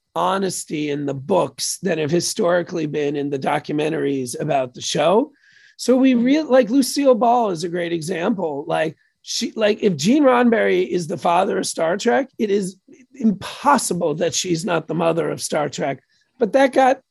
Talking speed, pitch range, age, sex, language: 175 wpm, 175-235 Hz, 40-59, male, English